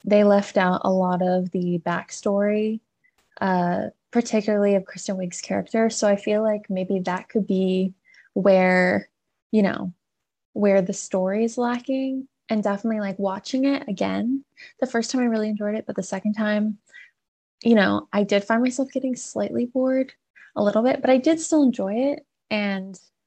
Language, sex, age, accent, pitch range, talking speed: English, female, 20-39, American, 185-225 Hz, 170 wpm